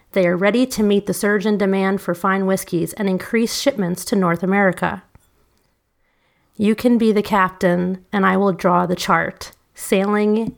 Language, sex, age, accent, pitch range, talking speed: English, female, 30-49, American, 185-215 Hz, 170 wpm